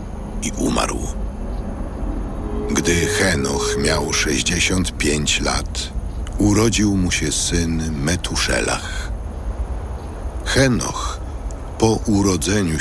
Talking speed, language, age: 65 wpm, Polish, 60-79